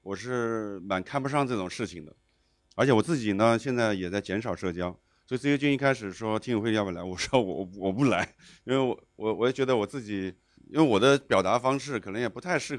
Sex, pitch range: male, 100-145 Hz